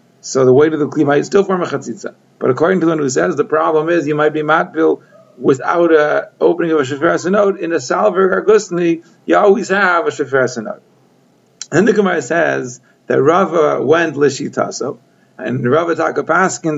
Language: English